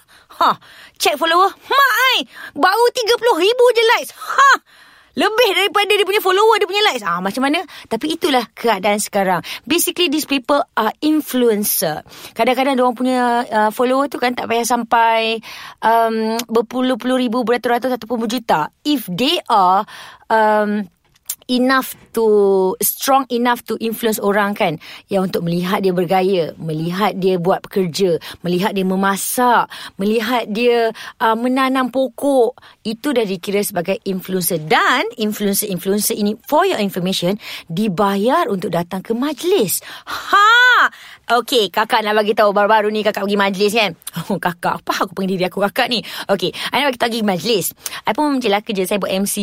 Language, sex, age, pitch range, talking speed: Malay, female, 20-39, 200-275 Hz, 150 wpm